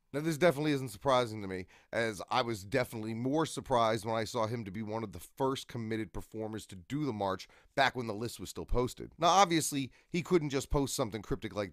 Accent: American